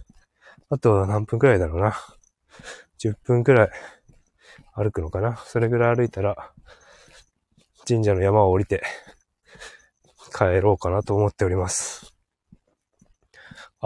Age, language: 20-39, Japanese